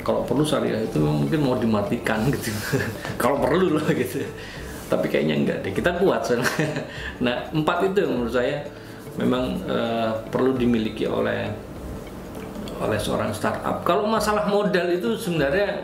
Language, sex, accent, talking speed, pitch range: Indonesian, male, native, 140 wpm, 125-175 Hz